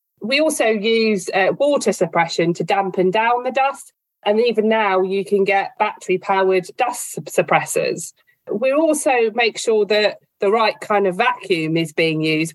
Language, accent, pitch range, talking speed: English, British, 175-220 Hz, 165 wpm